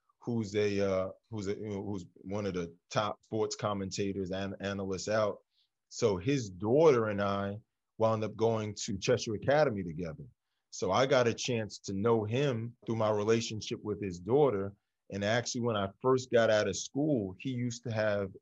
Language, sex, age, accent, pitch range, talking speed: English, male, 20-39, American, 100-115 Hz, 180 wpm